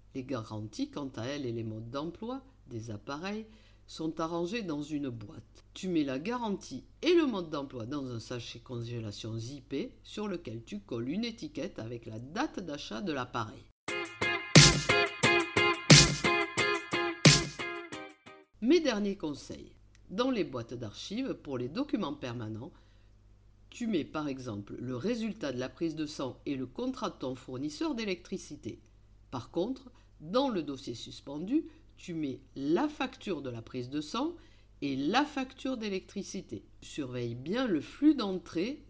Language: French